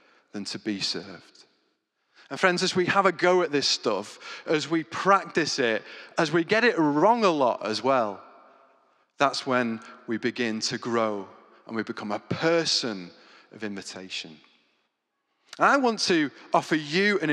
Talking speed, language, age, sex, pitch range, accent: 160 wpm, English, 30-49, male, 110-175 Hz, British